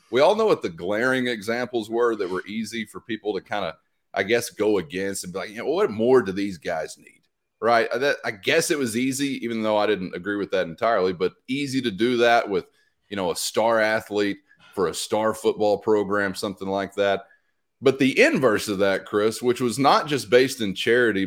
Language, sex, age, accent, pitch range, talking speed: English, male, 30-49, American, 110-145 Hz, 215 wpm